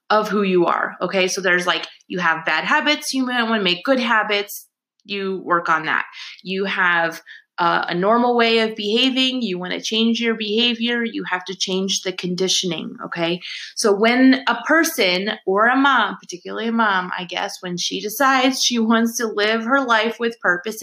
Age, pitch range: 20-39, 190-245 Hz